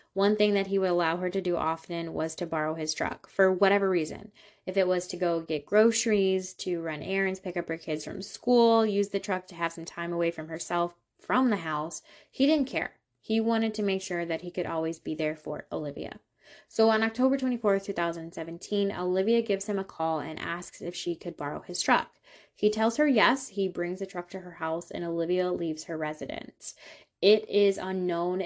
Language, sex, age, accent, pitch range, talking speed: English, female, 10-29, American, 165-200 Hz, 210 wpm